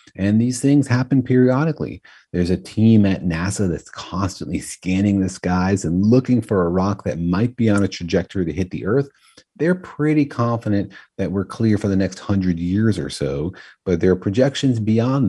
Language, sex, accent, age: English, male, American, 30-49